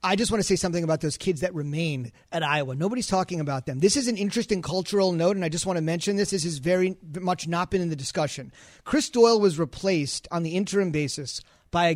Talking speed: 245 wpm